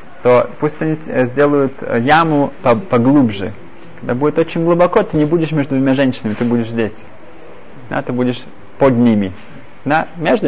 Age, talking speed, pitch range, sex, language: 20-39, 150 wpm, 120-150 Hz, male, Russian